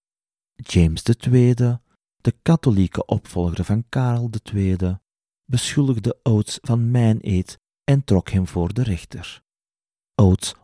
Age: 40-59